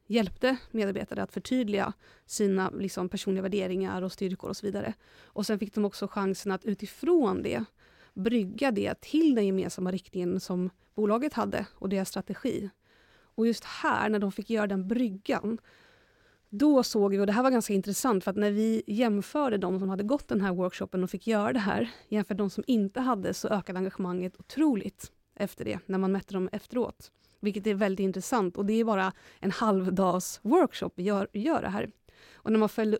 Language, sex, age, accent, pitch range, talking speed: Swedish, female, 30-49, native, 195-225 Hz, 195 wpm